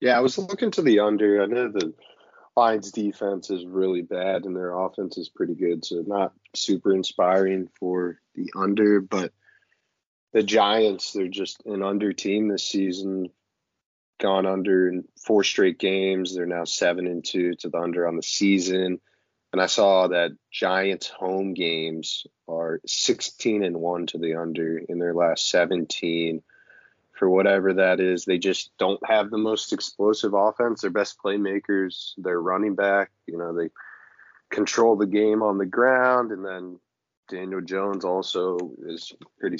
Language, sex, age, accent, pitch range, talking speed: English, male, 30-49, American, 90-100 Hz, 155 wpm